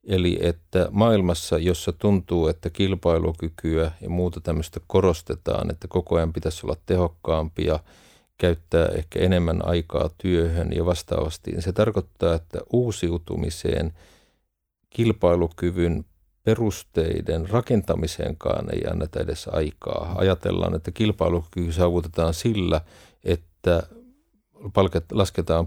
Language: Finnish